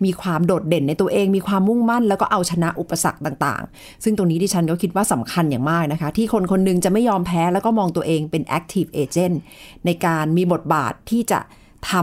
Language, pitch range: Thai, 170-225 Hz